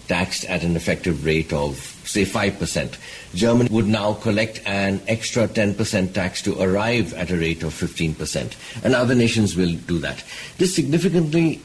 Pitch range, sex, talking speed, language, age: 90-110 Hz, male, 160 wpm, English, 60-79